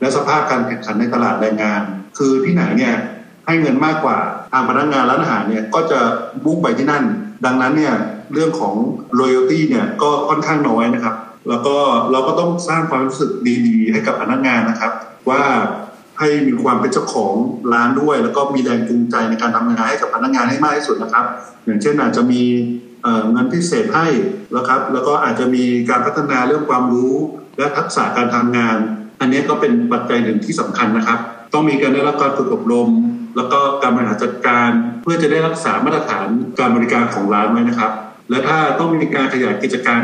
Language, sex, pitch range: Thai, male, 115-155 Hz